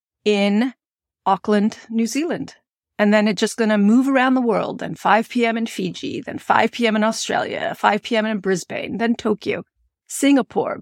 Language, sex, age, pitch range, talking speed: English, female, 30-49, 205-255 Hz, 170 wpm